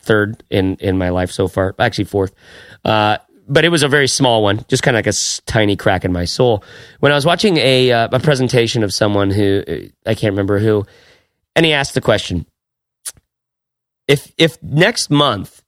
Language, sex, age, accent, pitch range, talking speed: English, male, 30-49, American, 105-140 Hz, 195 wpm